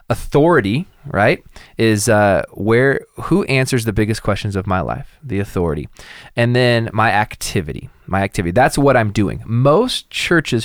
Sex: male